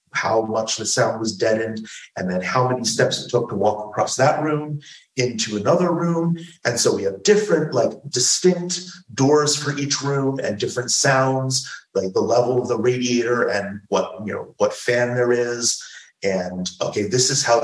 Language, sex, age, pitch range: English, male, 40-59, 105-135 Hz